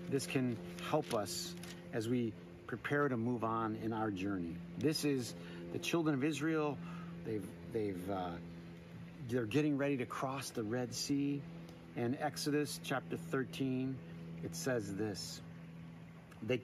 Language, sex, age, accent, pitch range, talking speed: English, male, 50-69, American, 110-155 Hz, 135 wpm